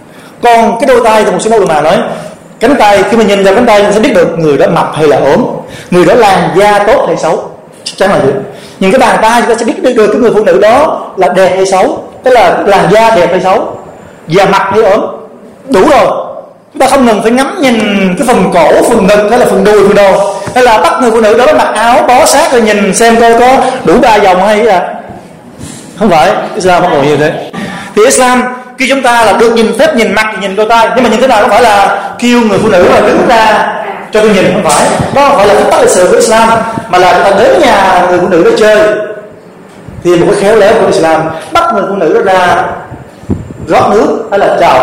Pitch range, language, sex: 195-230 Hz, Vietnamese, male